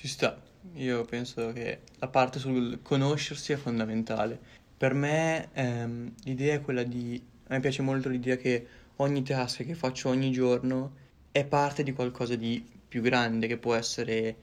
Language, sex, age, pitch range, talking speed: Italian, male, 20-39, 115-130 Hz, 165 wpm